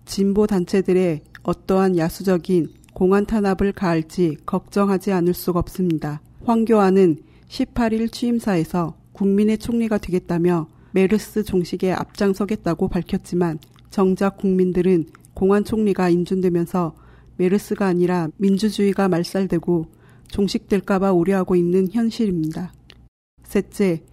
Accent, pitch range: native, 175-205 Hz